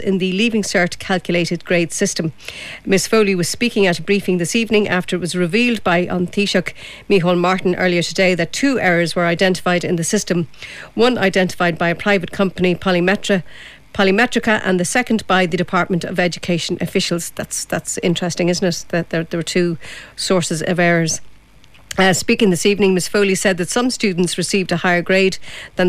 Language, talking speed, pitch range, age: English, 185 wpm, 175-200 Hz, 50-69